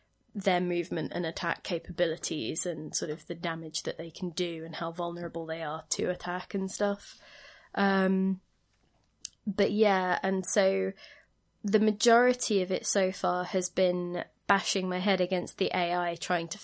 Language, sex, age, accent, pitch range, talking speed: English, female, 20-39, British, 170-200 Hz, 160 wpm